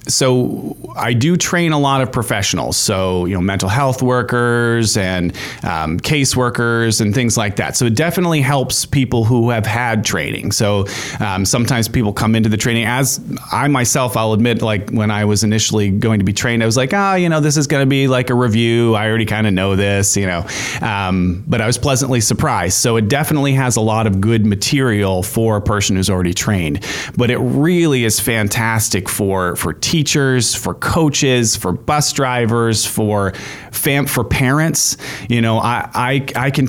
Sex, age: male, 30-49